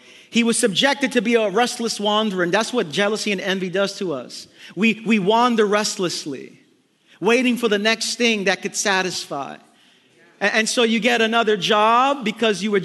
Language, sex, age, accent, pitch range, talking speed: English, male, 40-59, American, 195-235 Hz, 180 wpm